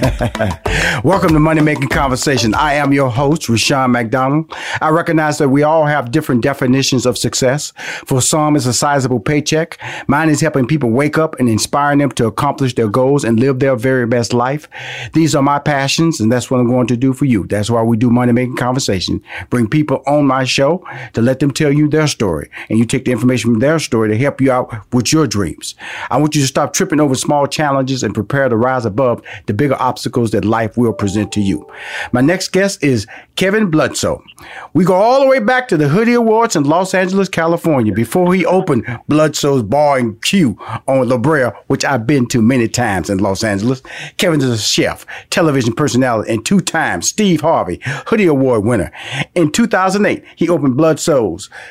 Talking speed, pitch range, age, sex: 200 wpm, 125-160 Hz, 40-59, male